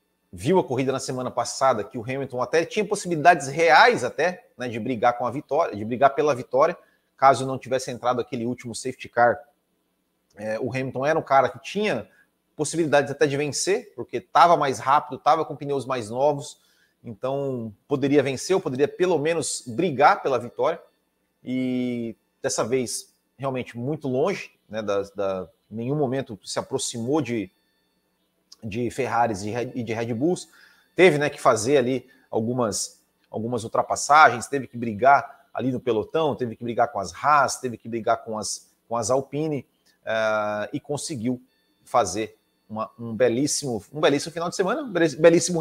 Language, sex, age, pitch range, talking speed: Portuguese, male, 30-49, 120-150 Hz, 165 wpm